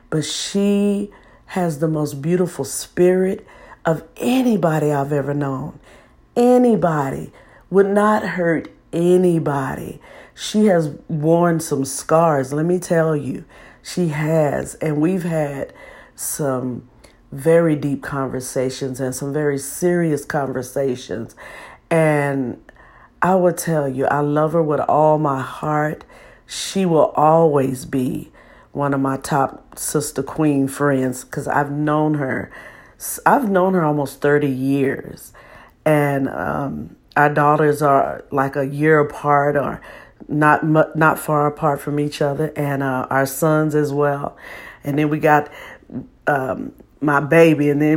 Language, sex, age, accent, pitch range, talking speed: English, female, 50-69, American, 140-160 Hz, 130 wpm